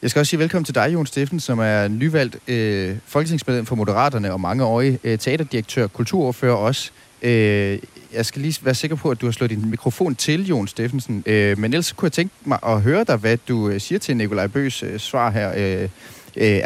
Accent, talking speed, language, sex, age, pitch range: native, 215 wpm, Danish, male, 30-49, 105-130 Hz